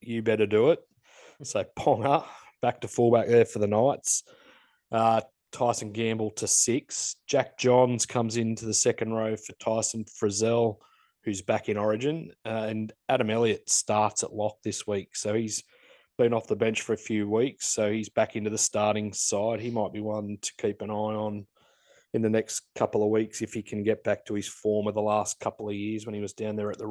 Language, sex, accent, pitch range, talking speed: English, male, Australian, 105-115 Hz, 205 wpm